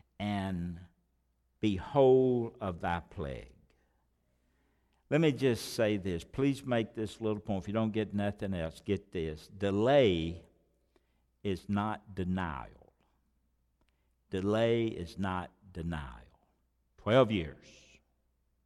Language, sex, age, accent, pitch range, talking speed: English, male, 60-79, American, 85-145 Hz, 105 wpm